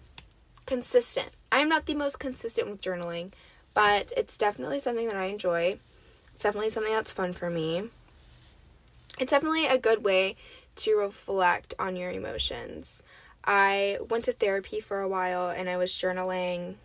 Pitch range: 190-265 Hz